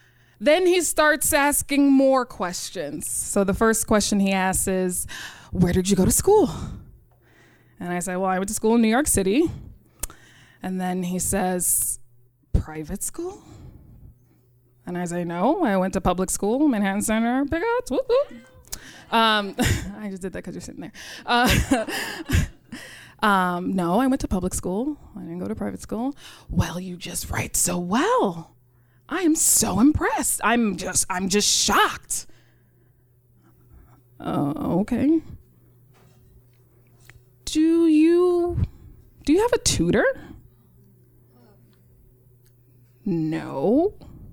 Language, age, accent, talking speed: English, 20-39, American, 135 wpm